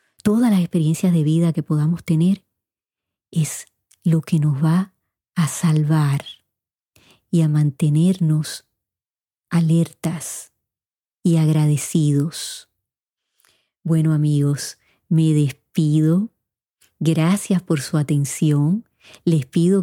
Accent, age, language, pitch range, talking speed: American, 30-49, Spanish, 150-180 Hz, 95 wpm